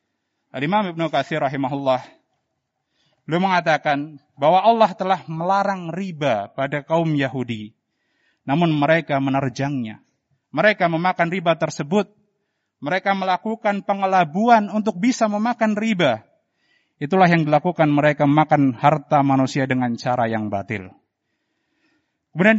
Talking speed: 105 wpm